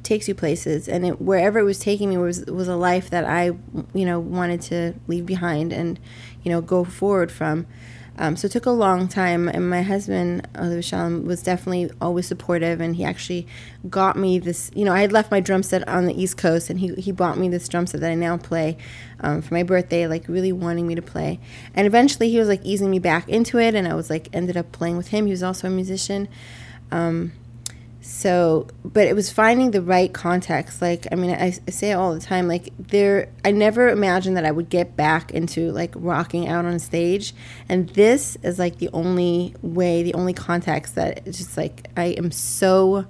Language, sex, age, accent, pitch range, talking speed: English, female, 20-39, American, 165-190 Hz, 220 wpm